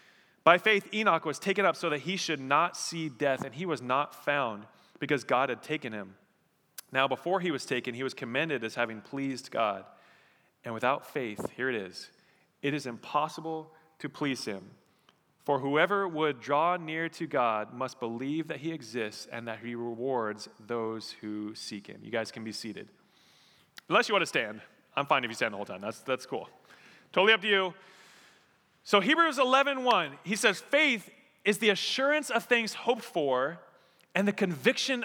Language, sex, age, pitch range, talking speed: English, male, 30-49, 135-210 Hz, 185 wpm